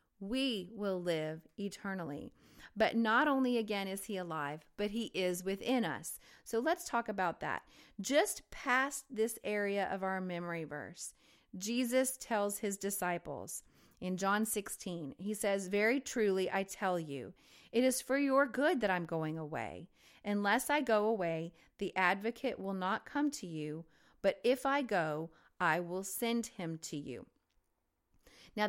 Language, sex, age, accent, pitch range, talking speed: English, female, 40-59, American, 180-225 Hz, 155 wpm